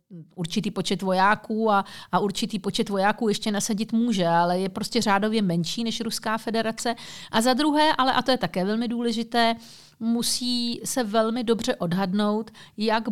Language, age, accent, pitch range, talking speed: Czech, 50-69, native, 175-220 Hz, 160 wpm